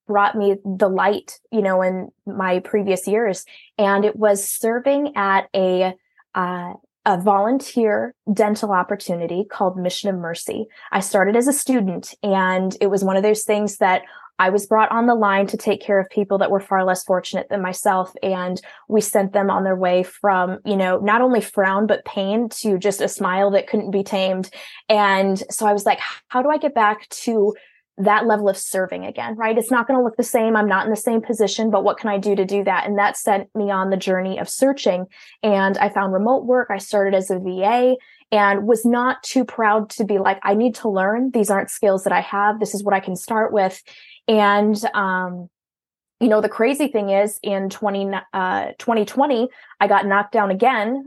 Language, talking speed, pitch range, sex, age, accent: English, 210 wpm, 195-225 Hz, female, 20-39, American